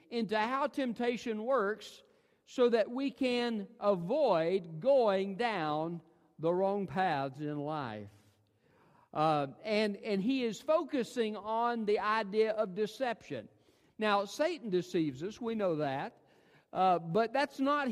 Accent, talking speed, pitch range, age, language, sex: American, 125 wpm, 180-250 Hz, 50-69, English, male